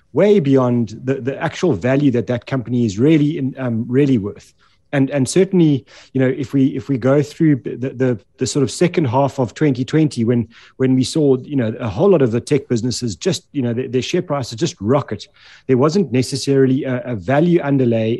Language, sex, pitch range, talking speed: English, male, 120-140 Hz, 210 wpm